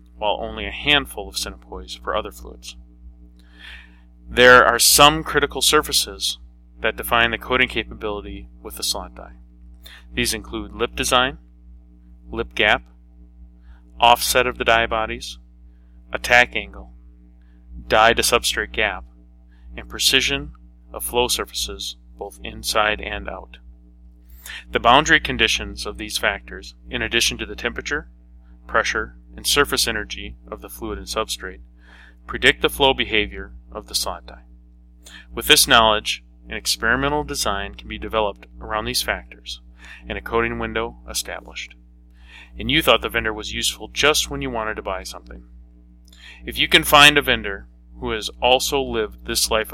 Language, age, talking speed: English, 30-49, 145 wpm